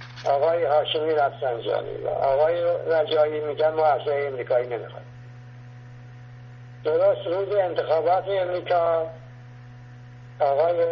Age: 60-79